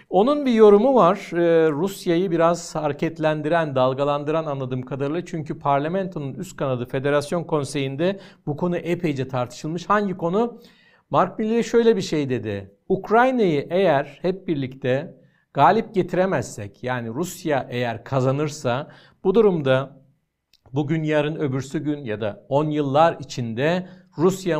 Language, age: Turkish, 60-79